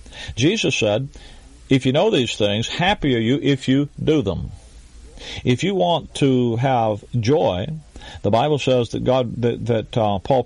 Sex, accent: male, American